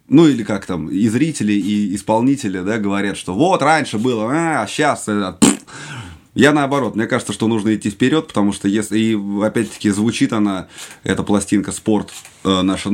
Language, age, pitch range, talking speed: Russian, 20-39, 100-110 Hz, 170 wpm